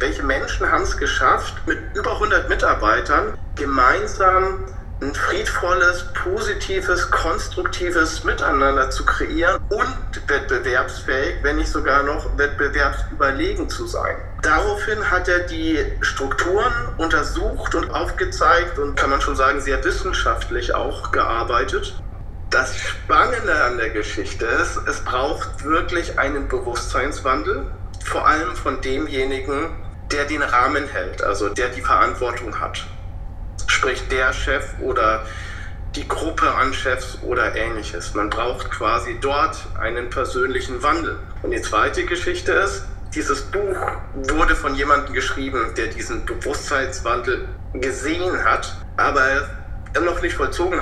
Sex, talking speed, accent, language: male, 125 wpm, German, German